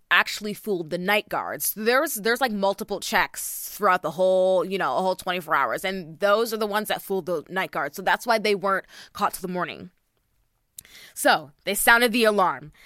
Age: 20-39